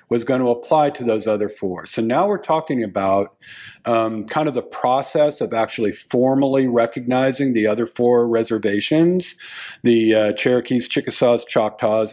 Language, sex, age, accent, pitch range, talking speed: English, male, 50-69, American, 110-135 Hz, 155 wpm